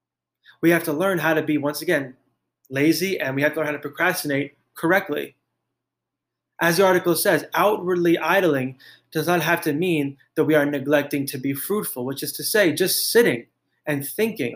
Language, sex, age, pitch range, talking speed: English, male, 20-39, 140-170 Hz, 185 wpm